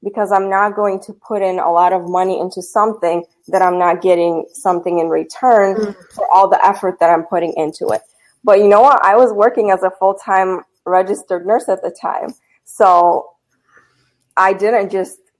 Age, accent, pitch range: 20-39, American, 180-215 Hz